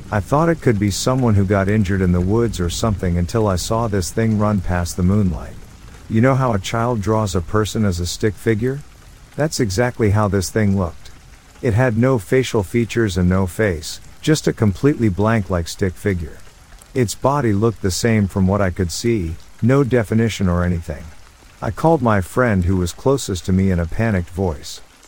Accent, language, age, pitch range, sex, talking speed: American, English, 50-69, 95-115 Hz, male, 200 wpm